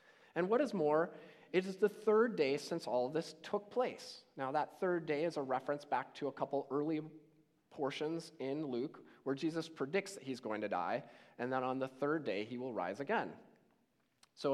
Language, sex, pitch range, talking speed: English, male, 140-195 Hz, 200 wpm